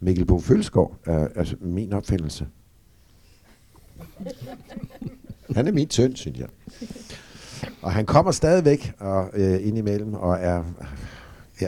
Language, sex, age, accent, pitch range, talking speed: Danish, male, 60-79, native, 80-100 Hz, 115 wpm